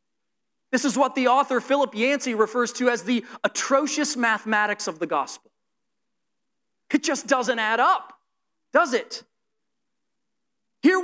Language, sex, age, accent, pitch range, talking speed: English, male, 30-49, American, 240-295 Hz, 130 wpm